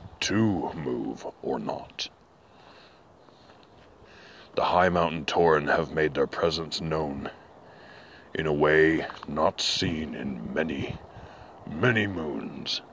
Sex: male